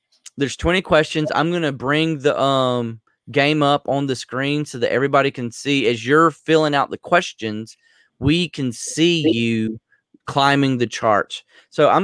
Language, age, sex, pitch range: English, 30-49, male, 125-160 Hz